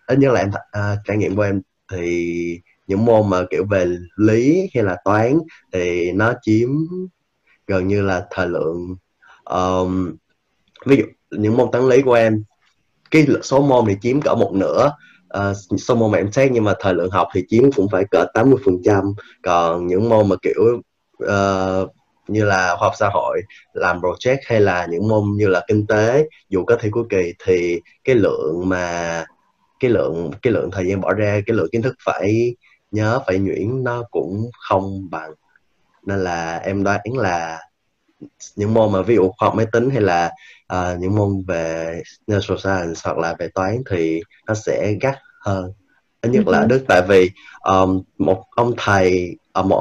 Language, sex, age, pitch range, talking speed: Vietnamese, male, 20-39, 90-115 Hz, 185 wpm